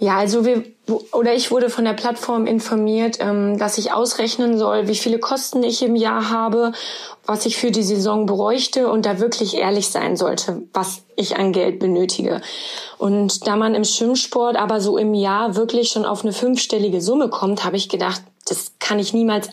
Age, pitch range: 20-39, 205-235 Hz